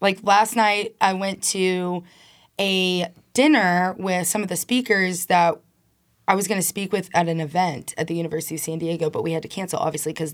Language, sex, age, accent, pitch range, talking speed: English, female, 20-39, American, 170-210 Hz, 210 wpm